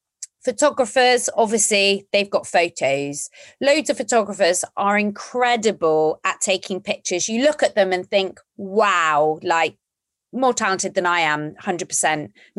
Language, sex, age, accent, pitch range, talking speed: English, female, 30-49, British, 185-245 Hz, 130 wpm